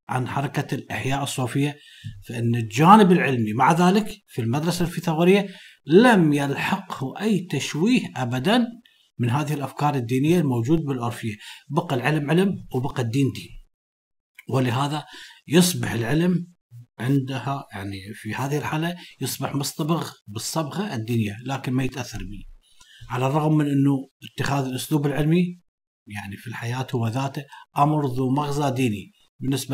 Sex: male